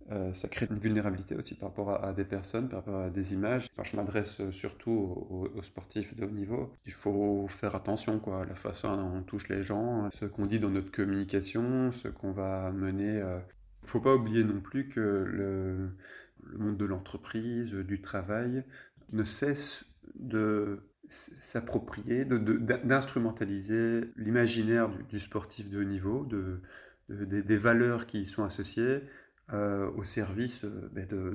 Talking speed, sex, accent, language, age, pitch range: 170 wpm, male, French, French, 20-39, 100-115 Hz